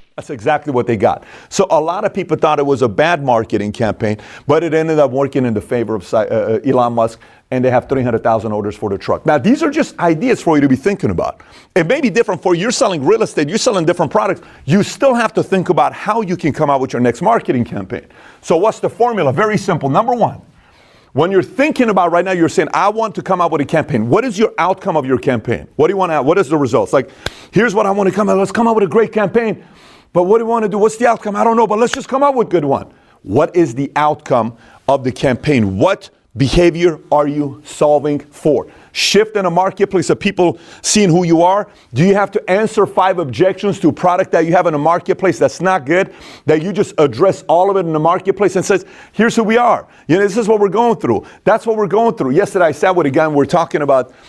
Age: 40-59